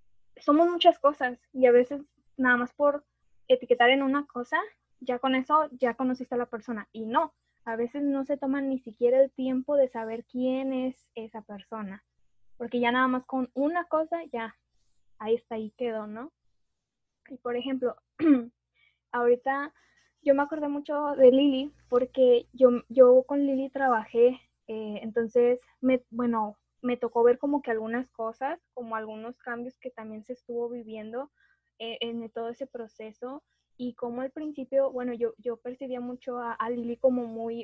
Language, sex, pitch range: Spanish, female, 235-270 Hz